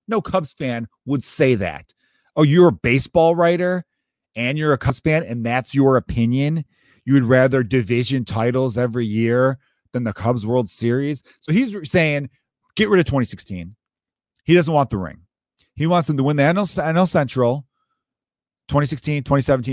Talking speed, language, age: 170 wpm, English, 30-49